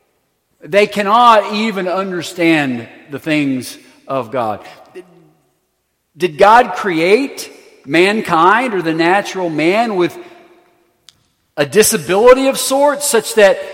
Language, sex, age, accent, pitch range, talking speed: English, male, 50-69, American, 220-280 Hz, 100 wpm